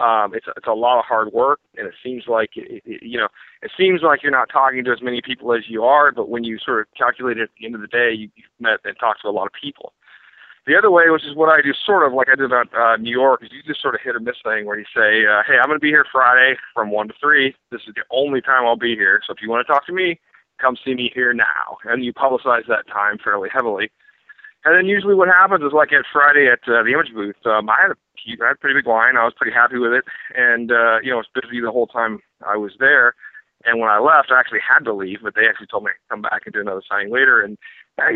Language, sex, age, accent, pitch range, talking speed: English, male, 30-49, American, 115-160 Hz, 290 wpm